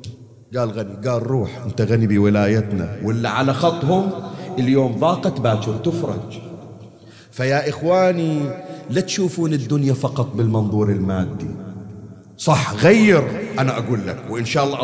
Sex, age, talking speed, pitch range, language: male, 50-69, 120 wpm, 105-140 Hz, Arabic